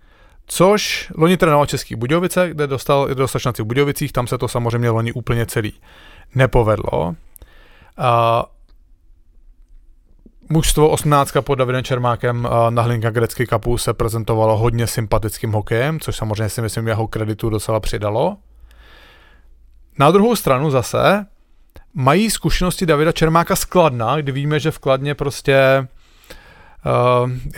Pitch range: 115-140 Hz